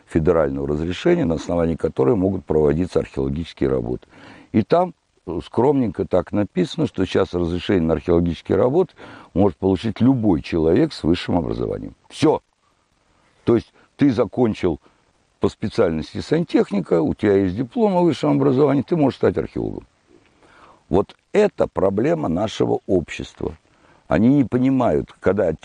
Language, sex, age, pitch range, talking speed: Russian, male, 60-79, 80-115 Hz, 130 wpm